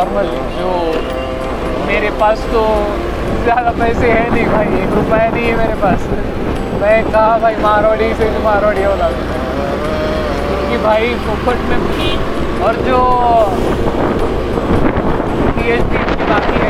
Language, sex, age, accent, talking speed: Marathi, male, 20-39, native, 120 wpm